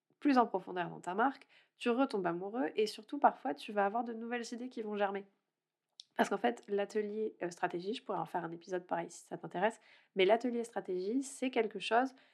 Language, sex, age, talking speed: French, female, 20-39, 205 wpm